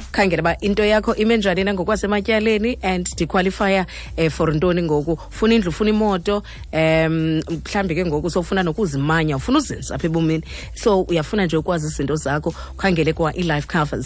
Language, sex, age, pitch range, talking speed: English, female, 30-49, 145-180 Hz, 195 wpm